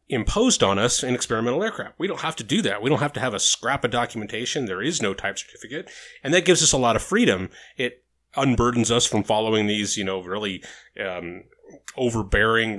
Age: 30-49